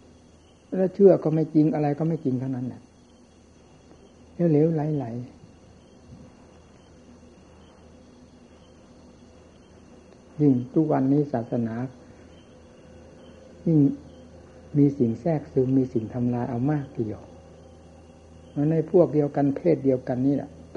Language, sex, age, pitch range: Thai, male, 60-79, 110-140 Hz